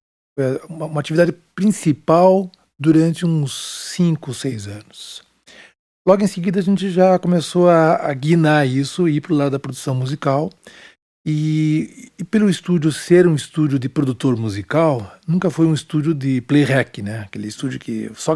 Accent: Brazilian